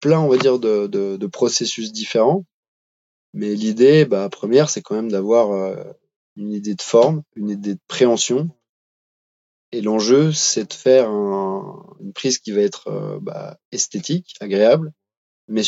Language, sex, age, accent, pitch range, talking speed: French, male, 20-39, French, 100-130 Hz, 160 wpm